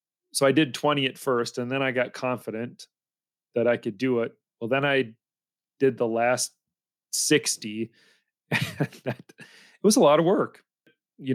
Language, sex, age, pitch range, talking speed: English, male, 40-59, 120-140 Hz, 170 wpm